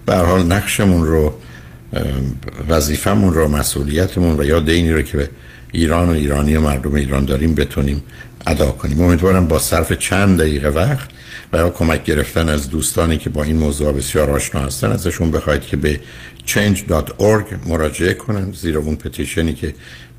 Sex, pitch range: male, 70-85 Hz